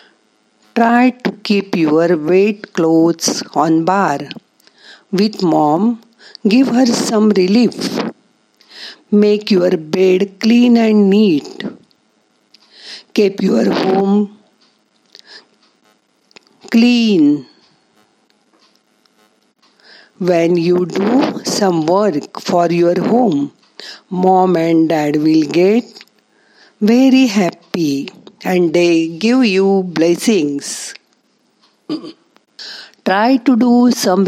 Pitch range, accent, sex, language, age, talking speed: 165-230 Hz, native, female, Marathi, 50-69, 85 wpm